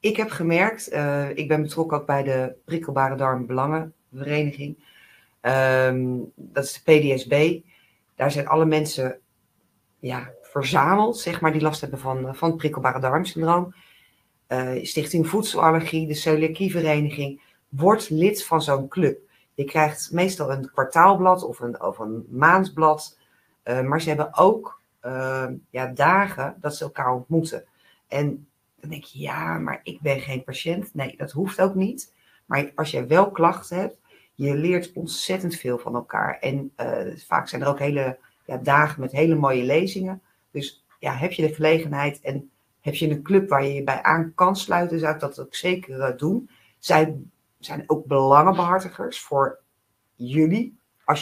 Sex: female